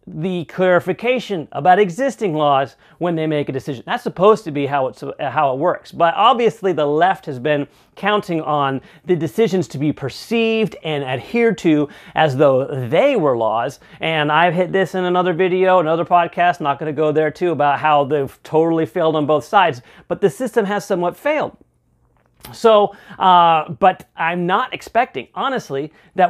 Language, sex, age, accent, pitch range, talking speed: English, male, 40-59, American, 155-210 Hz, 175 wpm